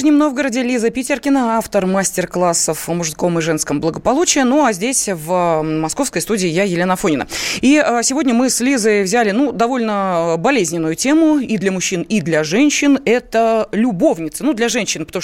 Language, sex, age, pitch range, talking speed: Russian, female, 20-39, 180-245 Hz, 165 wpm